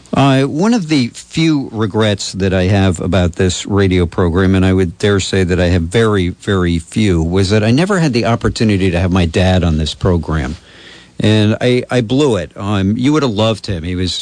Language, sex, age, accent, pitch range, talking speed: English, male, 50-69, American, 85-105 Hz, 215 wpm